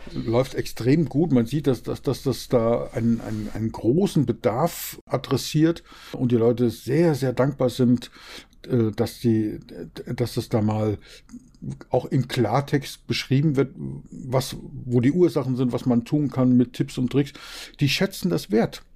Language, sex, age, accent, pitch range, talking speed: German, male, 50-69, German, 120-155 Hz, 160 wpm